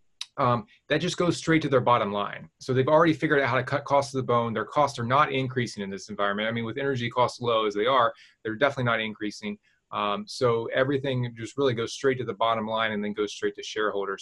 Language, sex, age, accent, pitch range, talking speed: English, male, 20-39, American, 110-135 Hz, 250 wpm